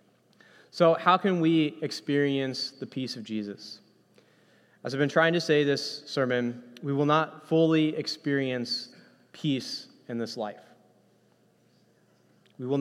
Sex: male